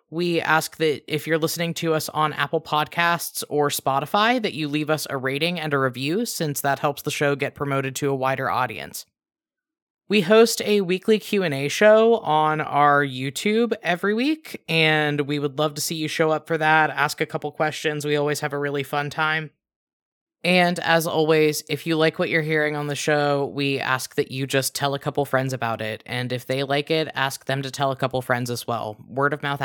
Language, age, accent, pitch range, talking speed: English, 20-39, American, 140-160 Hz, 215 wpm